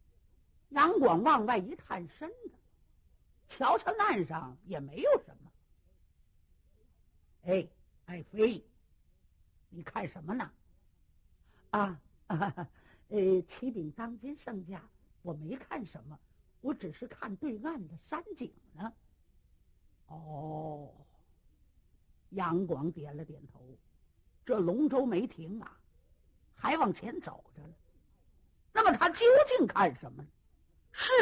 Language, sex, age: Chinese, female, 50-69